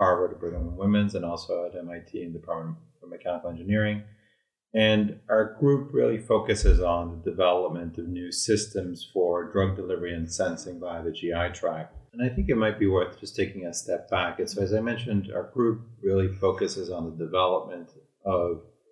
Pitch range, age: 90-115 Hz, 30-49